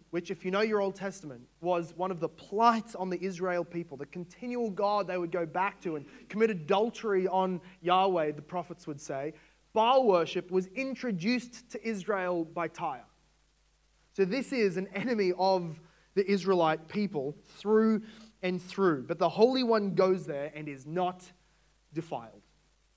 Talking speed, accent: 165 wpm, Australian